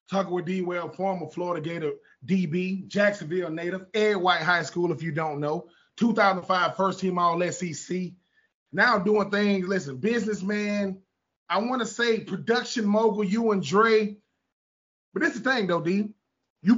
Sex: male